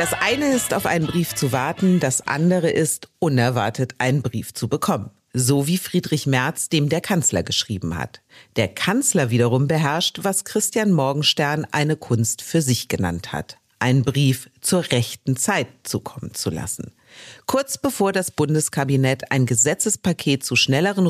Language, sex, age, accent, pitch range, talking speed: German, female, 50-69, German, 125-170 Hz, 155 wpm